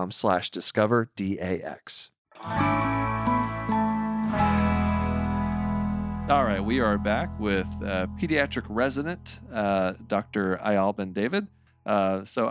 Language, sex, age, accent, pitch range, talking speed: English, male, 30-49, American, 100-135 Hz, 85 wpm